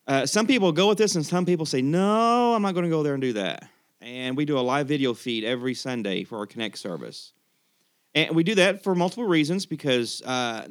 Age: 30-49